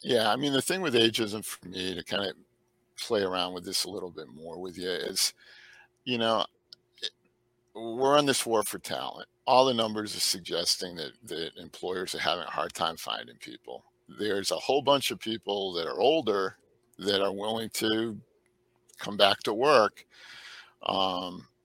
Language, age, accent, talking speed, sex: English, 50-69, American, 175 wpm, male